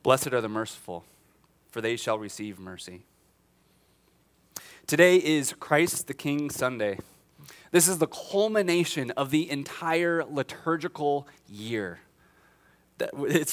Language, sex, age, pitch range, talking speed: English, male, 30-49, 120-160 Hz, 110 wpm